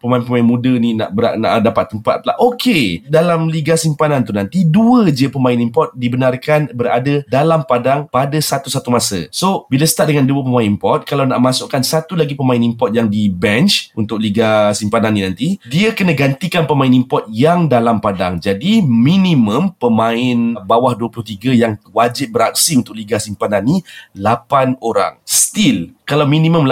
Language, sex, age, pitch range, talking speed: Malay, male, 30-49, 115-160 Hz, 165 wpm